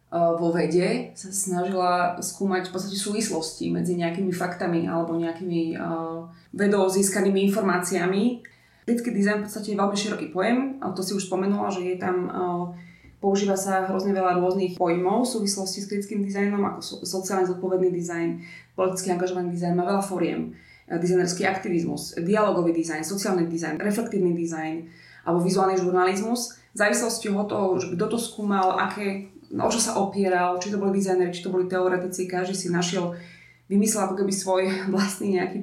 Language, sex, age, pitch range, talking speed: Slovak, female, 20-39, 175-200 Hz, 165 wpm